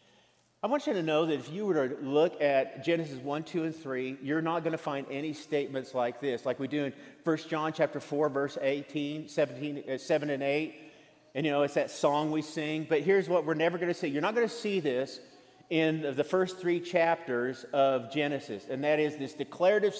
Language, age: English, 40-59